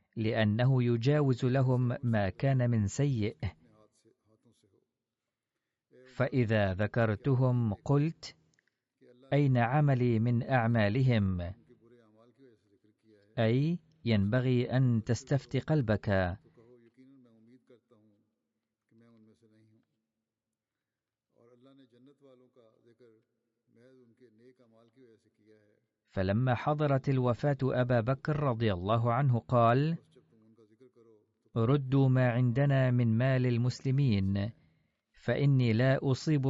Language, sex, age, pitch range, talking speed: Arabic, male, 40-59, 110-135 Hz, 60 wpm